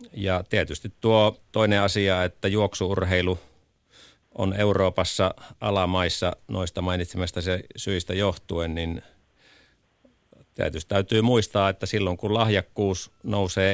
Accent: native